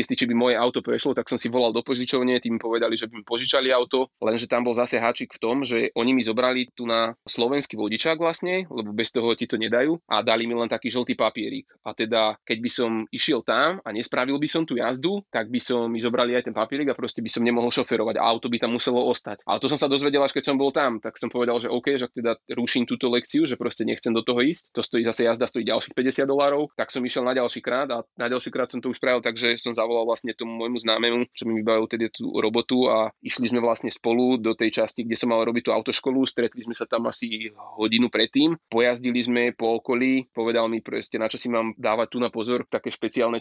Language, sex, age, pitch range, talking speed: Slovak, male, 20-39, 115-125 Hz, 245 wpm